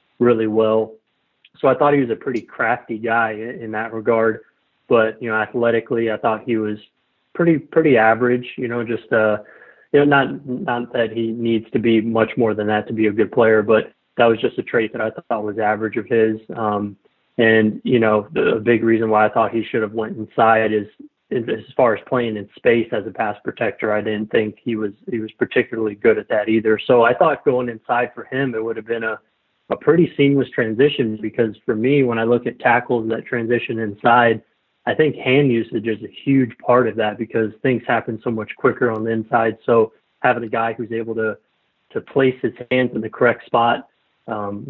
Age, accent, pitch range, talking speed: 30-49, American, 110-120 Hz, 215 wpm